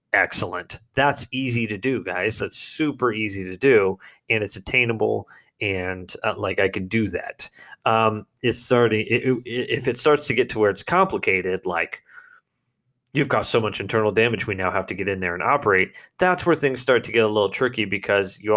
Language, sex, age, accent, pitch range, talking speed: English, male, 30-49, American, 105-130 Hz, 195 wpm